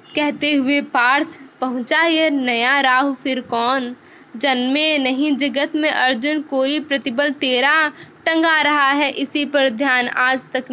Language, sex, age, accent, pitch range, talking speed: Hindi, female, 20-39, native, 260-305 Hz, 135 wpm